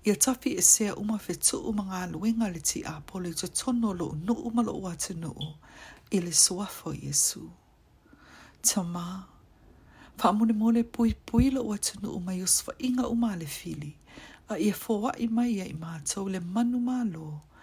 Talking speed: 140 wpm